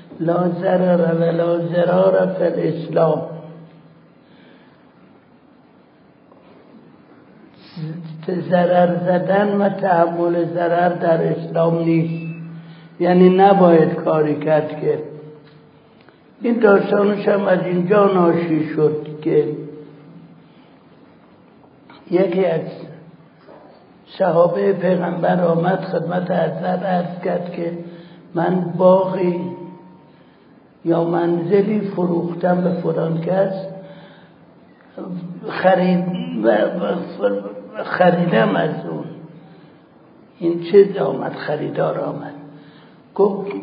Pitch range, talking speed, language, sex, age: 165-185 Hz, 75 wpm, Persian, male, 60-79